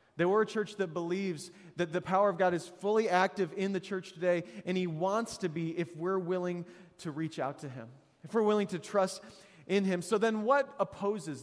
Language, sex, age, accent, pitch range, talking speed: English, male, 30-49, American, 170-210 Hz, 215 wpm